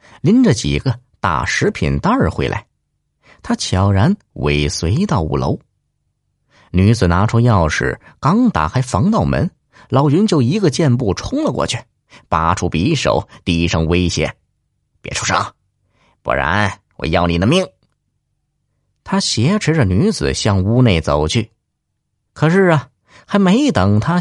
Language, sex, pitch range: Chinese, male, 90-130 Hz